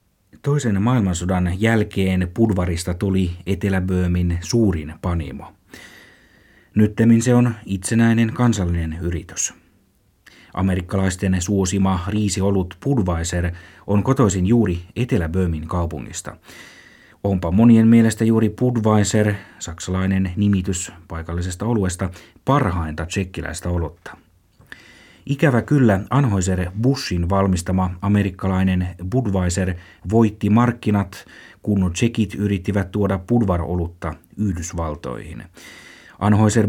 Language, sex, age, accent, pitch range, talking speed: Finnish, male, 30-49, native, 90-110 Hz, 85 wpm